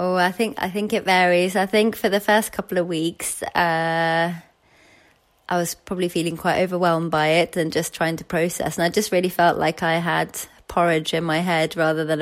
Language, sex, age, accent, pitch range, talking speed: English, female, 20-39, British, 165-200 Hz, 210 wpm